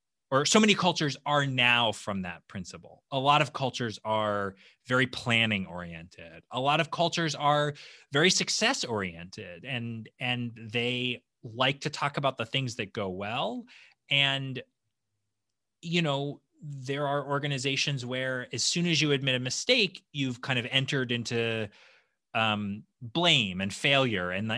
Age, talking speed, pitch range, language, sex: 30-49, 150 wpm, 110-155 Hz, English, male